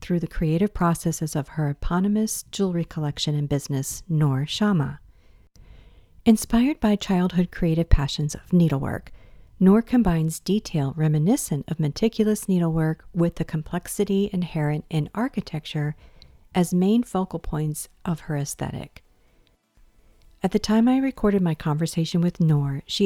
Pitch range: 150-190 Hz